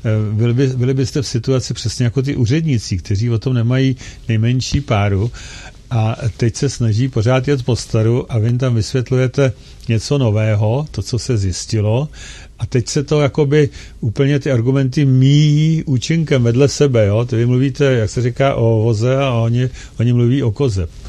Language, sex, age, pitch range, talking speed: Czech, male, 50-69, 110-135 Hz, 175 wpm